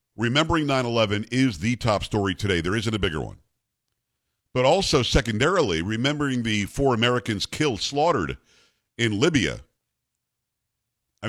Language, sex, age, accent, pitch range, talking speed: English, male, 50-69, American, 95-125 Hz, 135 wpm